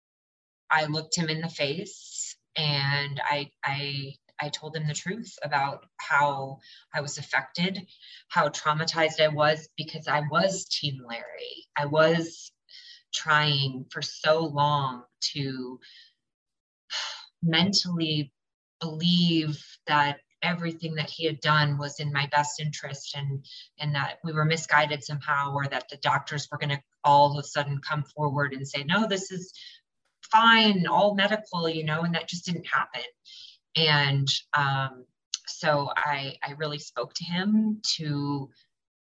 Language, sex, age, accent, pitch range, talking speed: English, female, 30-49, American, 140-170 Hz, 145 wpm